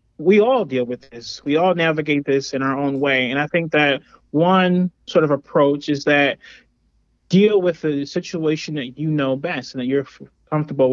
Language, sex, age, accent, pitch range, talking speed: English, male, 30-49, American, 135-165 Hz, 190 wpm